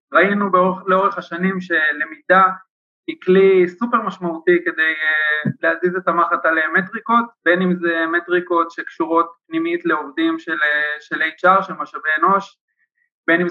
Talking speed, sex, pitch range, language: 130 wpm, male, 170-205 Hz, Hebrew